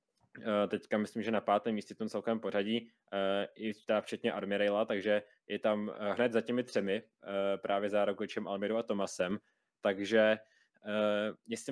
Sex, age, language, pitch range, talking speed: male, 20-39, Czech, 105-125 Hz, 140 wpm